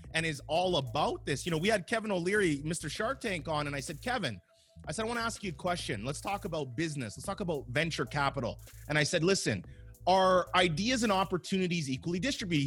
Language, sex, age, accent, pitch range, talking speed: English, male, 30-49, American, 140-190 Hz, 225 wpm